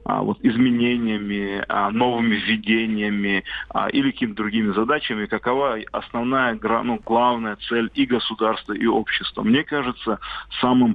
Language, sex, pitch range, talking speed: Russian, male, 105-120 Hz, 100 wpm